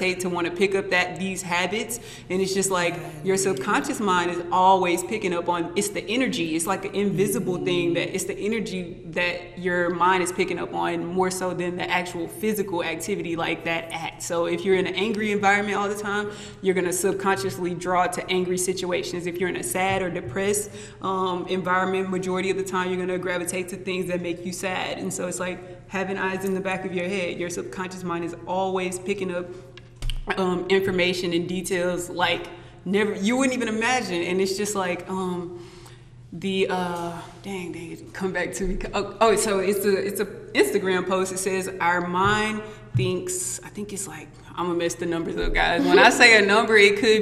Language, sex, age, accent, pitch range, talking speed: English, female, 20-39, American, 175-195 Hz, 210 wpm